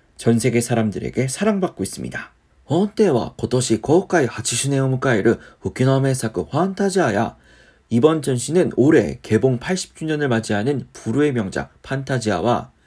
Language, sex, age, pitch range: Korean, male, 40-59, 110-160 Hz